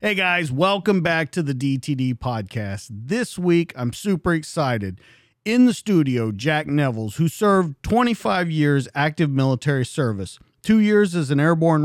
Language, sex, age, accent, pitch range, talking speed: English, male, 40-59, American, 130-175 Hz, 150 wpm